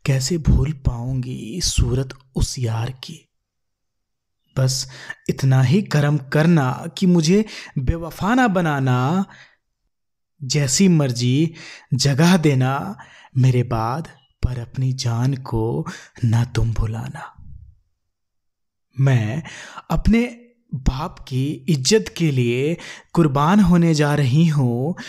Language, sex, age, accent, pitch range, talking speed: Hindi, male, 20-39, native, 125-165 Hz, 100 wpm